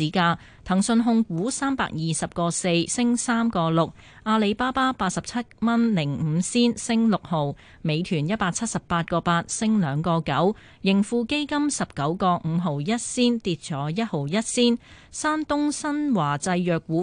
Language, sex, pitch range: Chinese, female, 165-230 Hz